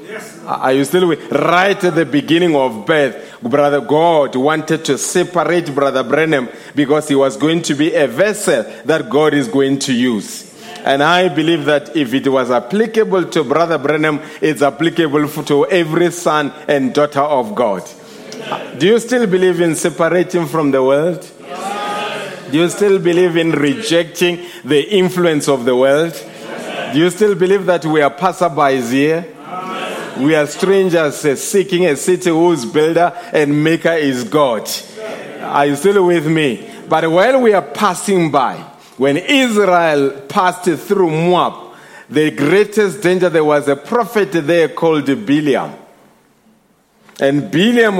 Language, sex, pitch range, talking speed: English, male, 145-180 Hz, 150 wpm